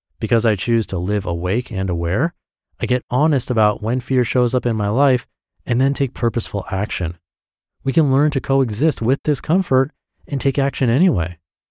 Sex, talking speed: male, 180 wpm